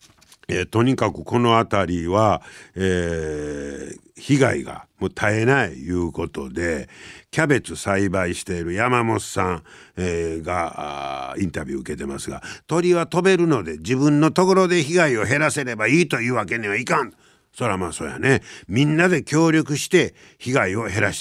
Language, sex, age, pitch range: Japanese, male, 60-79, 85-130 Hz